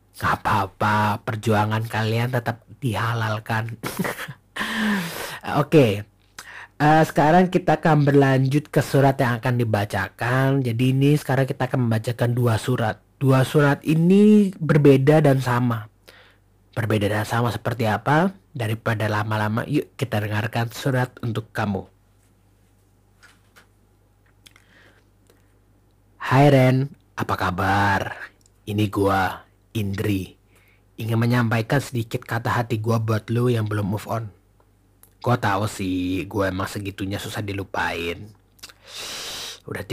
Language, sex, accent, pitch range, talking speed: Indonesian, male, native, 100-125 Hz, 110 wpm